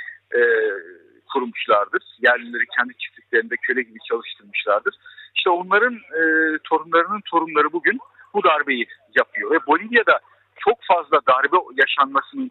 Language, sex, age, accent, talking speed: Turkish, male, 50-69, native, 110 wpm